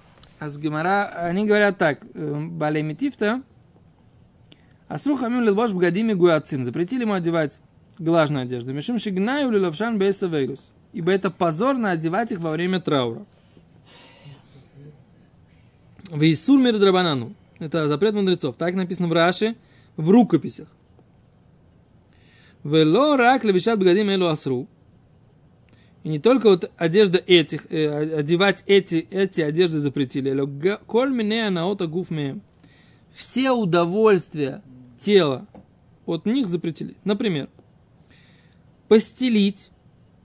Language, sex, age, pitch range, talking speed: Russian, male, 20-39, 155-205 Hz, 80 wpm